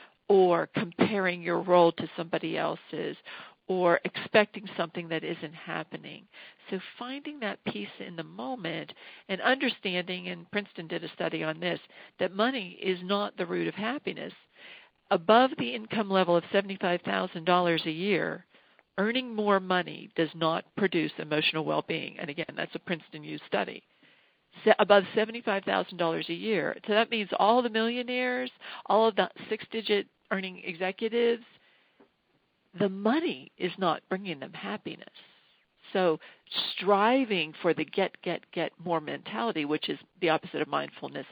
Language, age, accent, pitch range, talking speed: English, 50-69, American, 170-220 Hz, 140 wpm